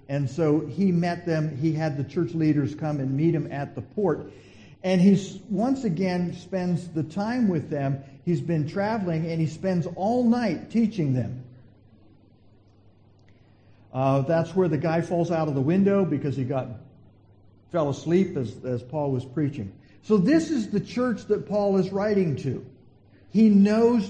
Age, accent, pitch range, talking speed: 50-69, American, 135-195 Hz, 170 wpm